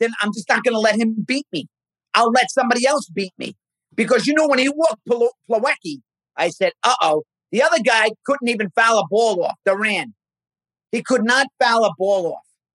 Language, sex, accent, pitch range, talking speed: English, male, American, 210-285 Hz, 205 wpm